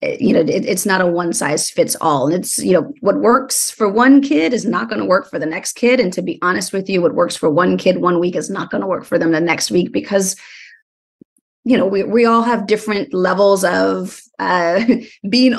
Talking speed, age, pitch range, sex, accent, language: 245 wpm, 30-49, 180-245 Hz, female, American, English